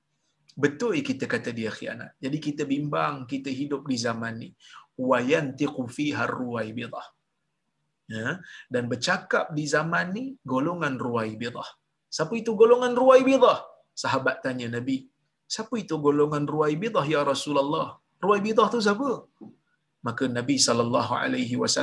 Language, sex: Malayalam, male